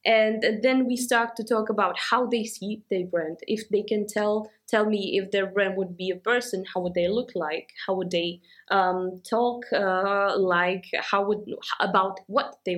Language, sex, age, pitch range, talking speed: English, female, 20-39, 190-235 Hz, 195 wpm